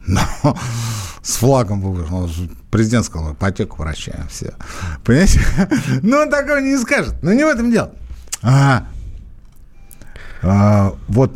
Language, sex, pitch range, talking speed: Russian, male, 90-130 Hz, 115 wpm